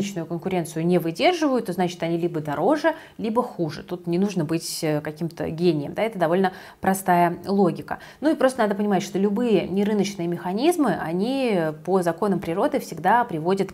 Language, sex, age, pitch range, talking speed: Russian, female, 20-39, 170-210 Hz, 155 wpm